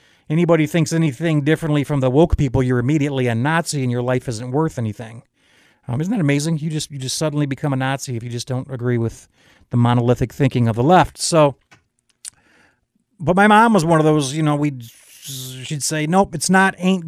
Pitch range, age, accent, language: 135-175 Hz, 40-59, American, English